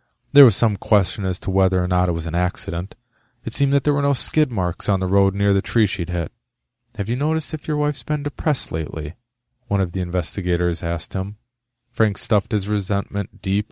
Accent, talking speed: American, 215 wpm